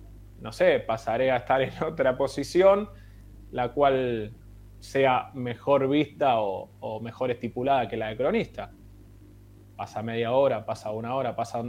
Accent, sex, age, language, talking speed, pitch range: Argentinian, male, 20-39, Spanish, 145 wpm, 110-140 Hz